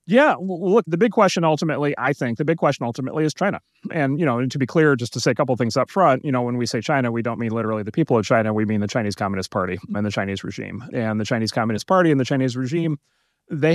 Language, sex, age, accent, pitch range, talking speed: English, male, 30-49, American, 110-140 Hz, 280 wpm